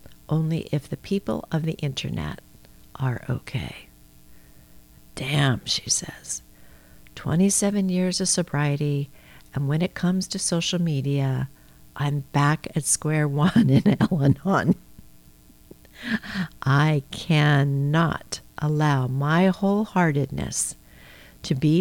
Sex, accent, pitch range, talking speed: female, American, 140-175 Hz, 100 wpm